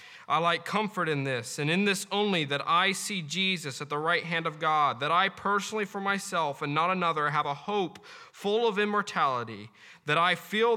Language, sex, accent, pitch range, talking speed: English, male, American, 125-180 Hz, 200 wpm